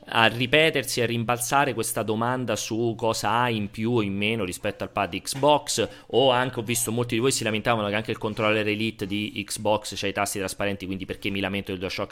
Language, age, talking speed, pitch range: Italian, 30-49, 225 wpm, 100-125 Hz